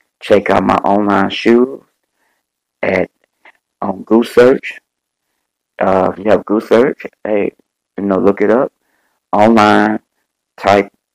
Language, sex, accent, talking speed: English, male, American, 130 wpm